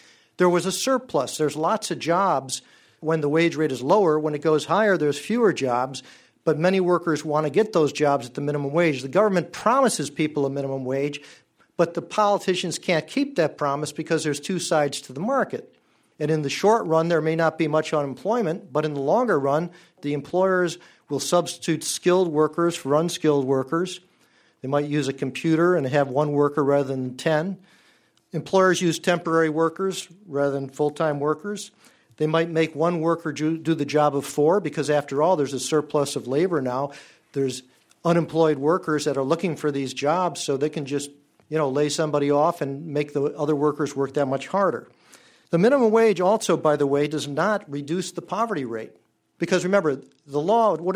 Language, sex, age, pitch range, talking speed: English, male, 50-69, 145-175 Hz, 190 wpm